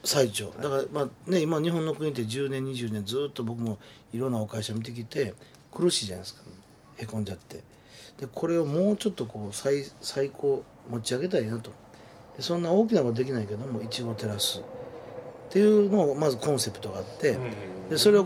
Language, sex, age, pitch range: Japanese, male, 40-59, 115-170 Hz